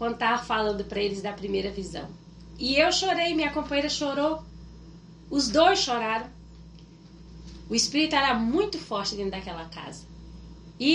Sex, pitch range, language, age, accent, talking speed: female, 170-245 Hz, Portuguese, 20-39, Brazilian, 135 wpm